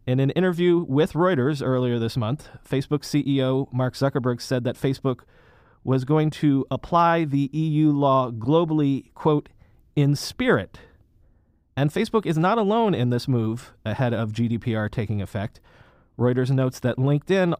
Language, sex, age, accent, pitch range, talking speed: English, male, 30-49, American, 115-155 Hz, 145 wpm